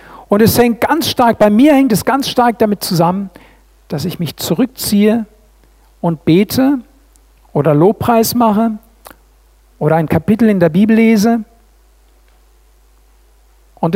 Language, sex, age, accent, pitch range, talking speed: German, male, 50-69, German, 185-235 Hz, 130 wpm